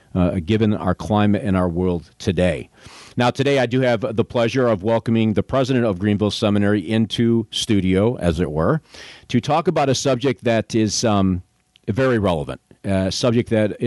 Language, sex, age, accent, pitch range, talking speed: English, male, 50-69, American, 95-125 Hz, 175 wpm